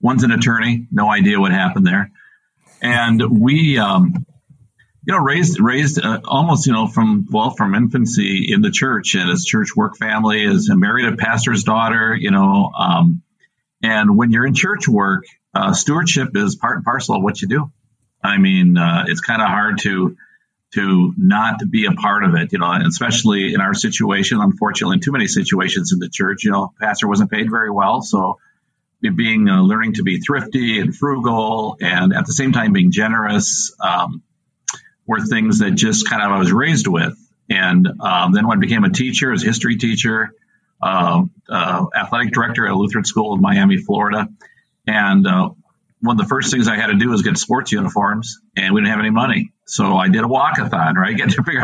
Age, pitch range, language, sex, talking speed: 50-69, 130-205 Hz, English, male, 200 wpm